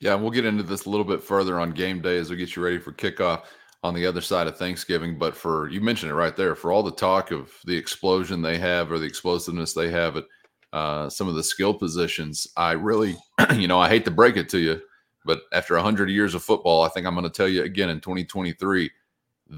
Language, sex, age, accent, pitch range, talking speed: English, male, 30-49, American, 85-100 Hz, 250 wpm